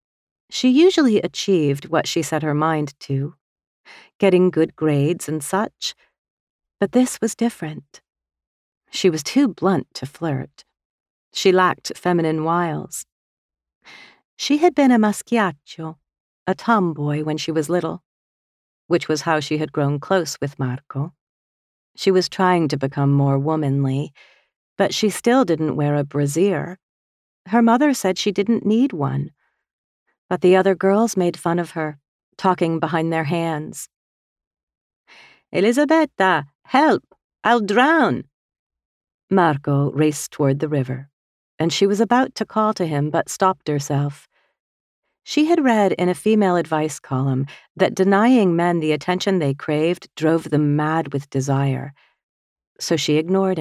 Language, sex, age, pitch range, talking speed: English, female, 40-59, 145-195 Hz, 140 wpm